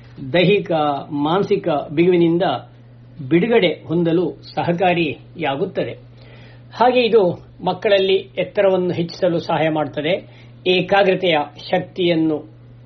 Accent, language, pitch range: native, Kannada, 125-180 Hz